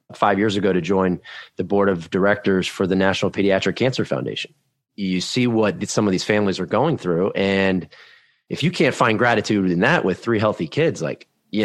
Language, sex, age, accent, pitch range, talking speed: English, male, 30-49, American, 95-110 Hz, 200 wpm